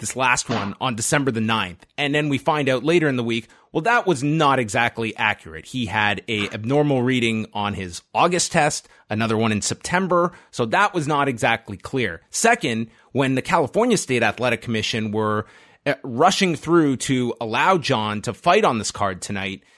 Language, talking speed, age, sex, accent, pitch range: English, 180 wpm, 30-49, male, American, 110-150 Hz